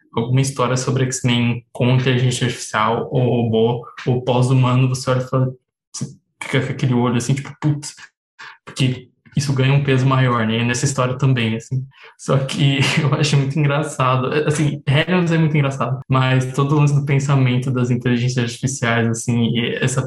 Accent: Brazilian